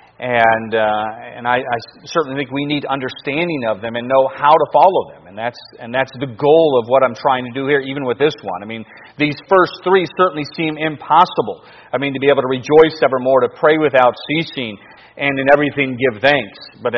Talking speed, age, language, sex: 215 wpm, 40-59, English, male